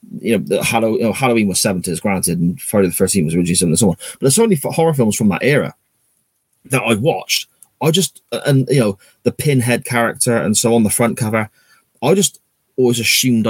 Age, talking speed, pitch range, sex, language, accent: 30-49, 220 wpm, 100-125 Hz, male, English, British